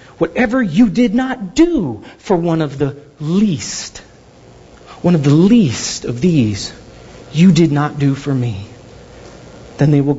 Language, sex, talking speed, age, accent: English, male, 145 wpm, 40-59, American